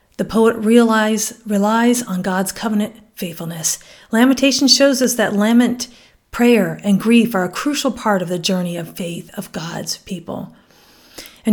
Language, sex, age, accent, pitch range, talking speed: English, female, 40-59, American, 195-255 Hz, 145 wpm